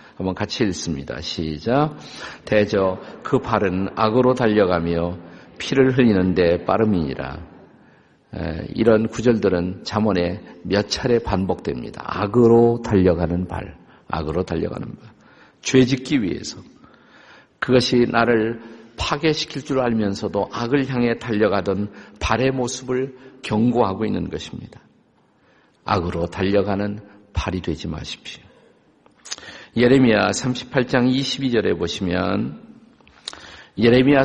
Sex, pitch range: male, 95-125 Hz